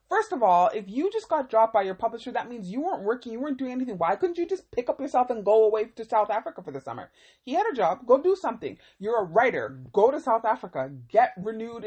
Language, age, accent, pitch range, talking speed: English, 30-49, American, 185-250 Hz, 265 wpm